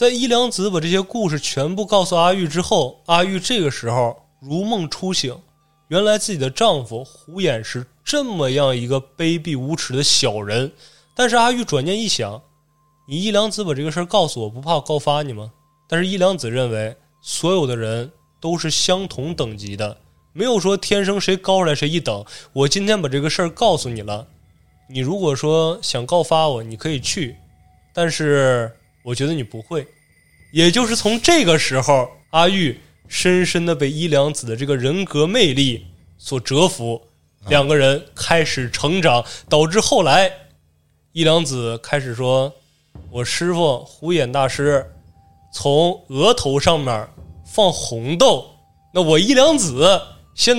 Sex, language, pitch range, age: male, Chinese, 125-180 Hz, 20-39